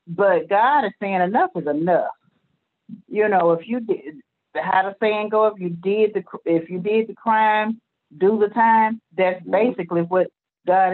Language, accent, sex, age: English, American, female, 40-59